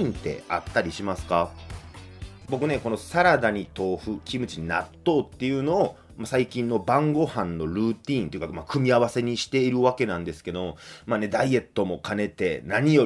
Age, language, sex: 30-49, Japanese, male